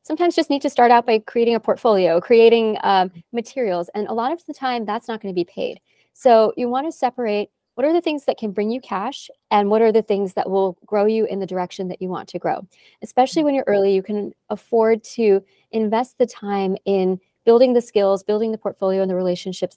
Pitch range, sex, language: 190-230 Hz, female, English